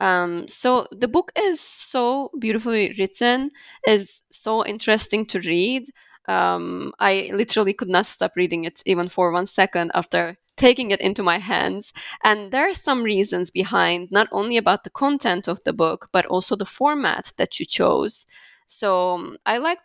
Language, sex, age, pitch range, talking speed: English, female, 20-39, 175-215 Hz, 170 wpm